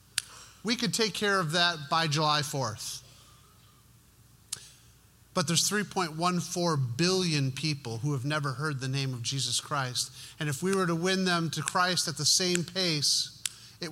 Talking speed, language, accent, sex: 160 wpm, English, American, male